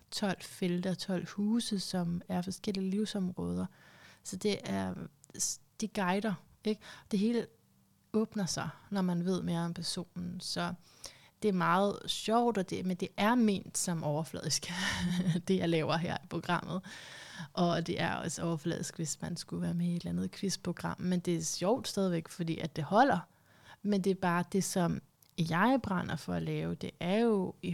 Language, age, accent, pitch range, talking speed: Danish, 30-49, native, 170-200 Hz, 175 wpm